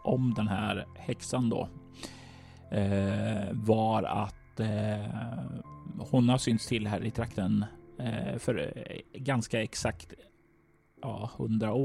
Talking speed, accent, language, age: 110 wpm, native, Swedish, 30-49